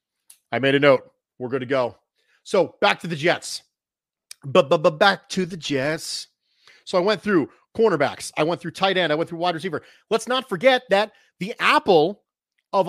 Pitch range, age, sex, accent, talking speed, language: 140-205 Hz, 40-59, male, American, 195 wpm, English